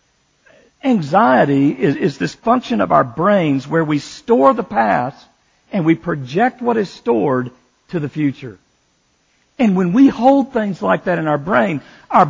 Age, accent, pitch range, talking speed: 50-69, American, 130-195 Hz, 160 wpm